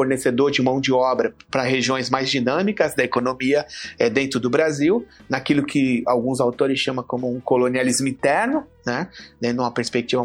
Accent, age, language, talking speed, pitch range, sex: Brazilian, 30-49, Portuguese, 160 wpm, 125-155 Hz, male